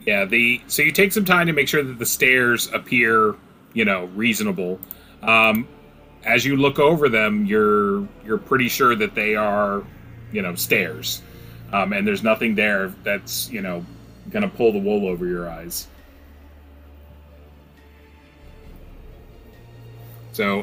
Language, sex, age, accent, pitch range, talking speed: English, male, 30-49, American, 100-125 Hz, 145 wpm